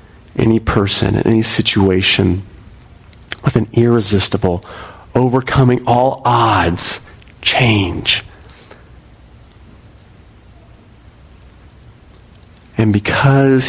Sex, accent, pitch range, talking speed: male, American, 100-125 Hz, 60 wpm